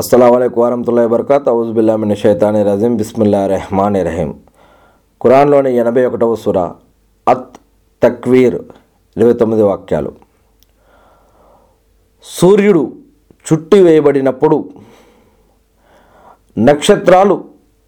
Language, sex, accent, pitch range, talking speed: Telugu, male, native, 125-160 Hz, 70 wpm